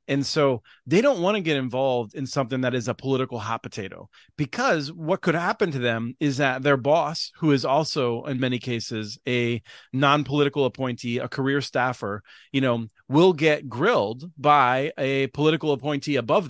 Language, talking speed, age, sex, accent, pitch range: English, 175 wpm, 30-49, male, American, 125-155 Hz